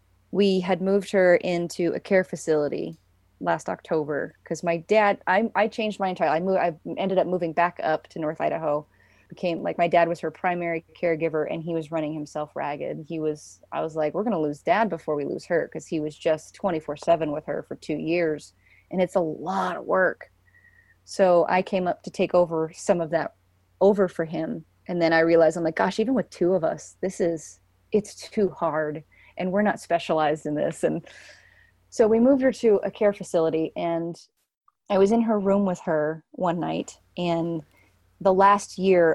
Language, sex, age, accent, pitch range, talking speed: English, female, 30-49, American, 160-195 Hz, 200 wpm